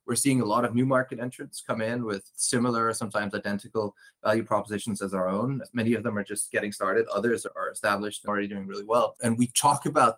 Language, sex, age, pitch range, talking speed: English, male, 20-39, 105-125 Hz, 220 wpm